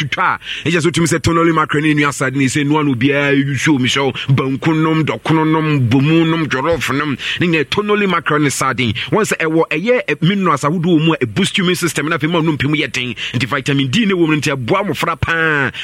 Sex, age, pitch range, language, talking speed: male, 30-49, 135-165 Hz, English, 230 wpm